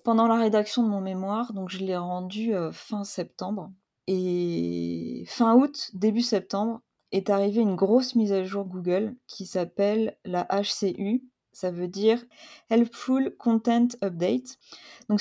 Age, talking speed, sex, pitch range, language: 30-49, 145 wpm, female, 175-220 Hz, French